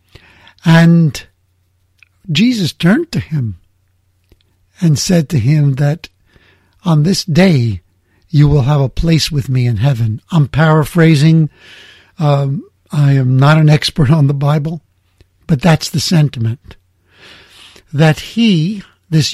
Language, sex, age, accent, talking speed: English, male, 60-79, American, 125 wpm